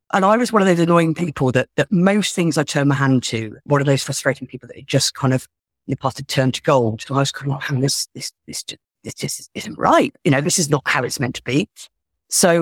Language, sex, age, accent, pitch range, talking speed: English, female, 50-69, British, 135-175 Hz, 290 wpm